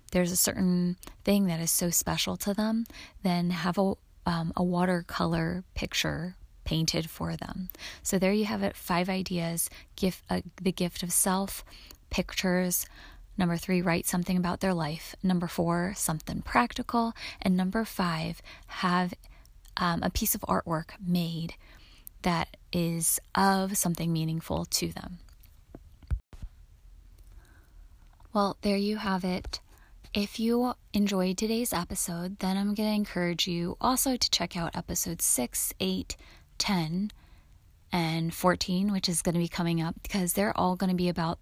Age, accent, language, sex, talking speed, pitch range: 20-39, American, English, female, 150 wpm, 165-190 Hz